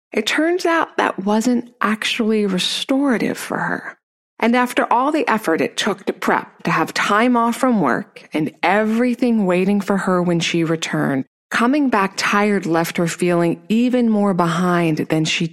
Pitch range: 165-225 Hz